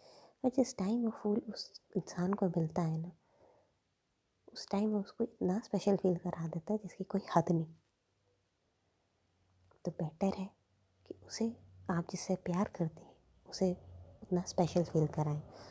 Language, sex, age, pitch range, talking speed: Hindi, female, 20-39, 155-195 Hz, 150 wpm